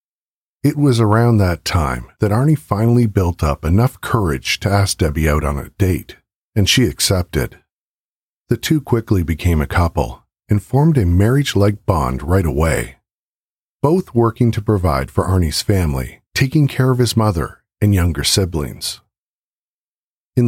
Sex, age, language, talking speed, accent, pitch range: male, 50-69, English, 150 wpm, American, 85-120 Hz